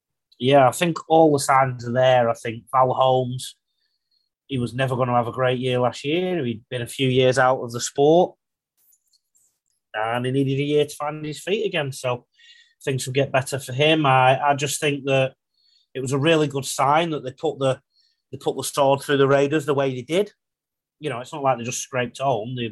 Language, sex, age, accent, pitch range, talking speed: English, male, 30-49, British, 115-150 Hz, 225 wpm